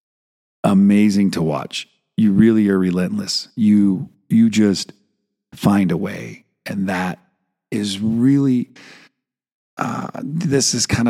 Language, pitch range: English, 85-110 Hz